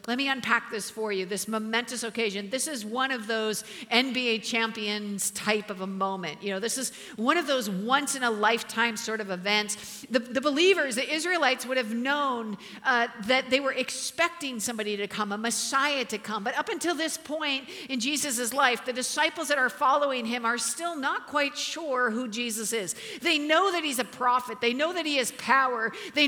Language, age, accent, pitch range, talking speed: English, 50-69, American, 235-295 Hz, 195 wpm